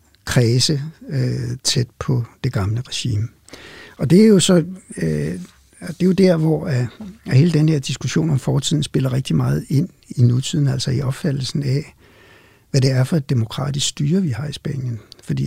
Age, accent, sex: 60-79, native, male